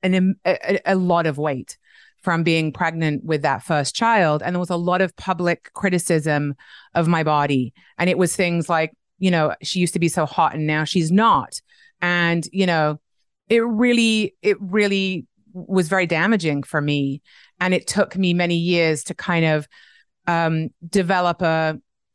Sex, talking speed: female, 175 wpm